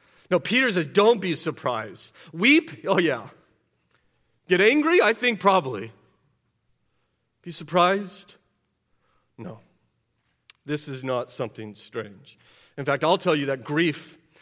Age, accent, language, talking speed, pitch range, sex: 40-59, American, English, 120 wpm, 135-185 Hz, male